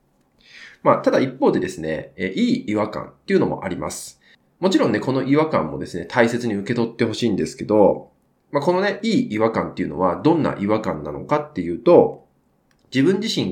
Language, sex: Japanese, male